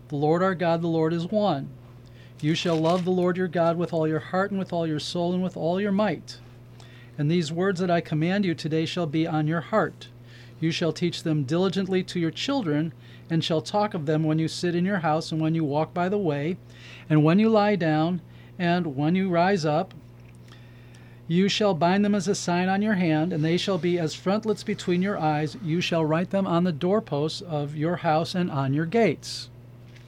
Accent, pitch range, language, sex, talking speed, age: American, 150-180 Hz, English, male, 220 wpm, 40-59